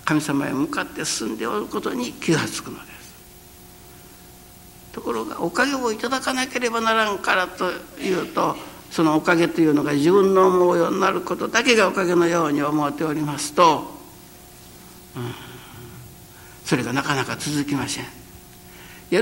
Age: 60-79